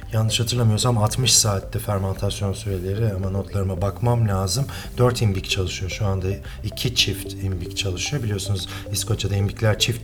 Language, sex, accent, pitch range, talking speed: Turkish, male, native, 95-125 Hz, 135 wpm